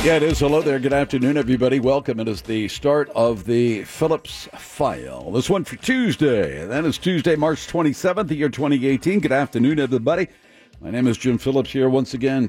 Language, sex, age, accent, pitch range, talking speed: English, male, 60-79, American, 100-140 Hz, 190 wpm